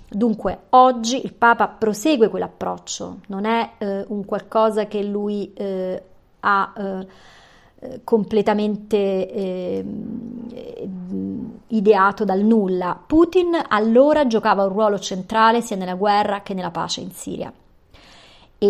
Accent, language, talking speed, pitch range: native, Italian, 115 wpm, 185-225 Hz